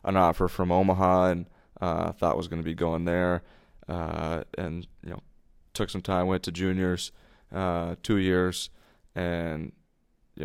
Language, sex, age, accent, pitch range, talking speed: English, male, 20-39, American, 85-90 Hz, 160 wpm